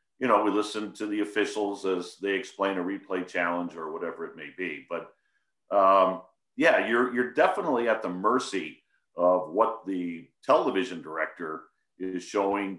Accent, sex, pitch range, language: American, male, 95-120 Hz, English